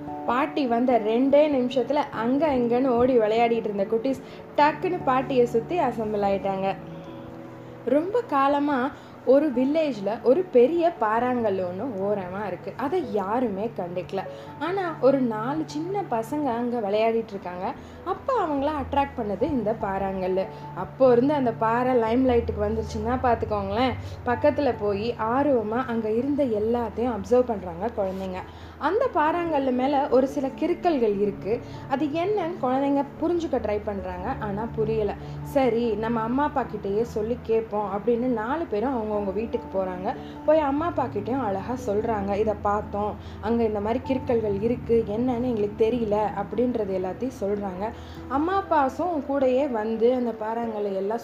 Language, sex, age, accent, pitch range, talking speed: Tamil, female, 20-39, native, 215-280 Hz, 130 wpm